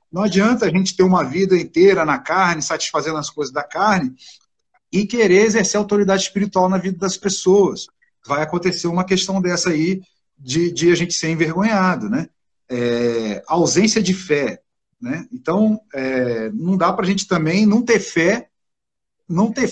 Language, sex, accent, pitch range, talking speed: Portuguese, male, Brazilian, 150-205 Hz, 165 wpm